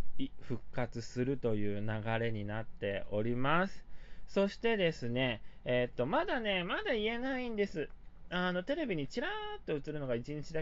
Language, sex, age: Japanese, male, 20-39